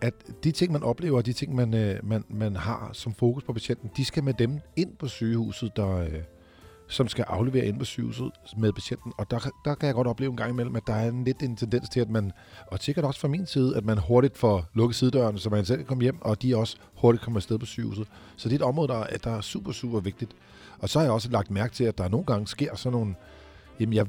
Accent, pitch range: native, 105-130 Hz